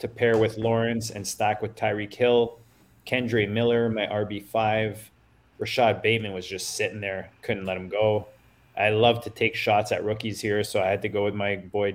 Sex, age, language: male, 20-39, English